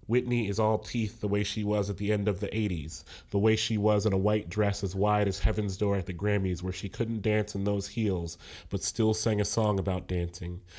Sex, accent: male, American